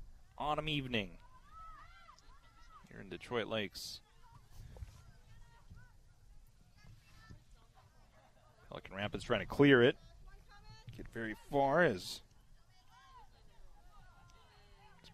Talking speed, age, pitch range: 65 wpm, 30-49, 110-130 Hz